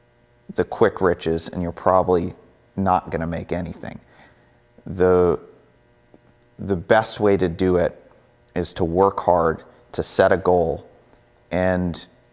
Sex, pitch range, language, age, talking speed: male, 85-100 Hz, English, 30-49, 130 wpm